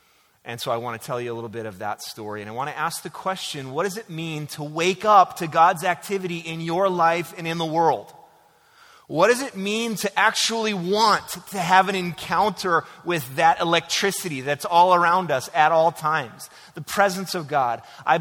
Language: English